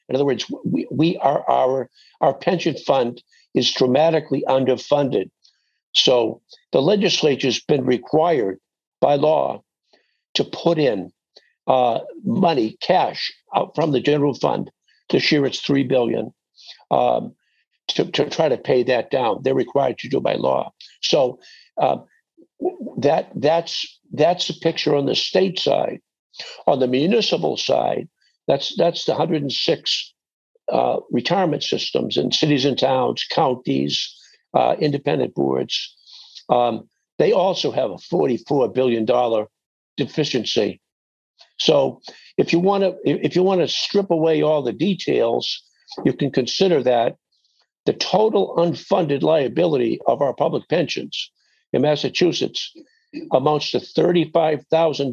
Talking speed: 135 wpm